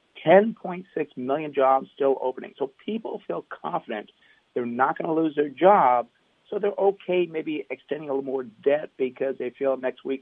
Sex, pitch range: male, 135-185 Hz